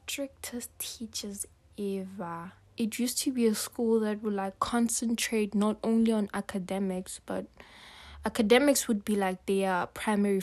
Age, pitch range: 20-39, 190-225 Hz